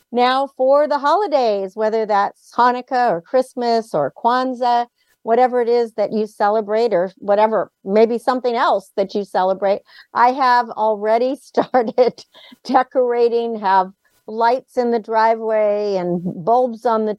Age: 50-69